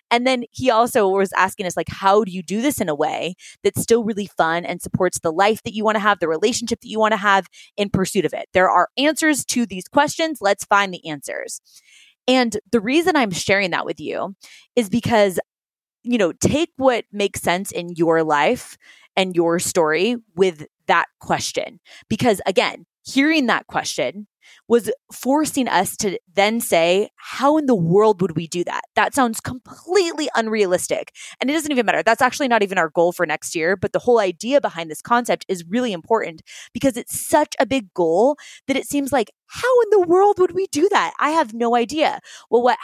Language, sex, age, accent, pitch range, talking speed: English, female, 20-39, American, 195-265 Hz, 205 wpm